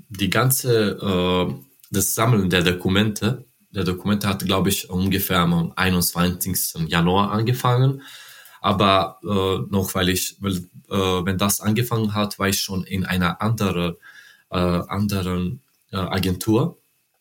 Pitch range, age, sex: 95-110 Hz, 20-39, male